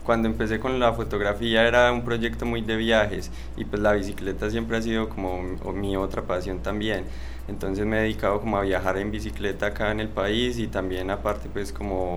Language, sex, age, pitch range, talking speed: Spanish, male, 20-39, 95-110 Hz, 200 wpm